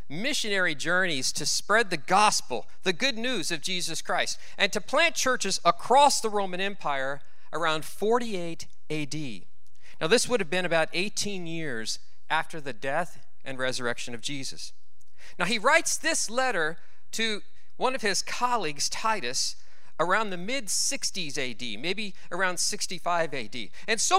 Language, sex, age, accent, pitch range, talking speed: English, male, 40-59, American, 140-215 Hz, 145 wpm